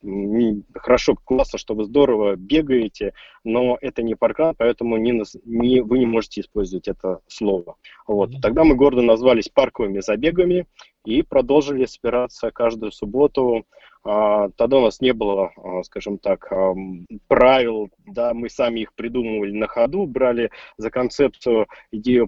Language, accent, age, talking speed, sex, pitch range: Russian, native, 20-39, 135 wpm, male, 105-130 Hz